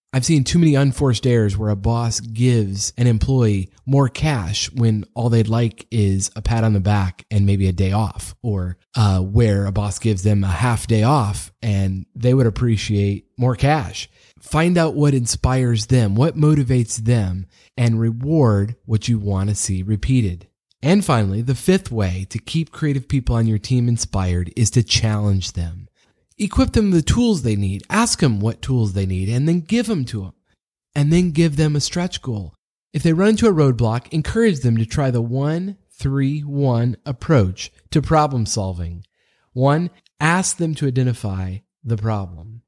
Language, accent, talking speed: English, American, 185 wpm